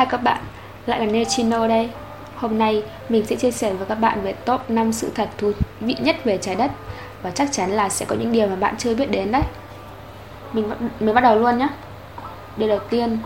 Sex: female